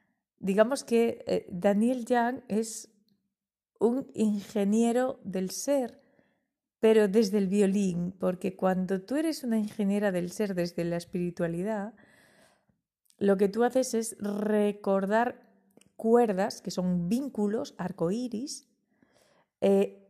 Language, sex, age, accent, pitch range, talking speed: Spanish, female, 30-49, Spanish, 180-215 Hz, 115 wpm